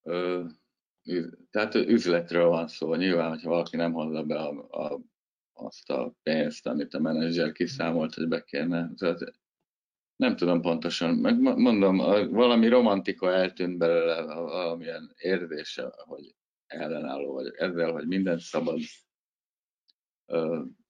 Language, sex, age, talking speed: Hungarian, male, 60-79, 110 wpm